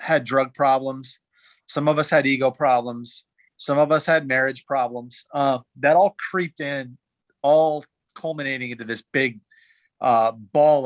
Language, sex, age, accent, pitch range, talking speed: English, male, 40-59, American, 125-150 Hz, 150 wpm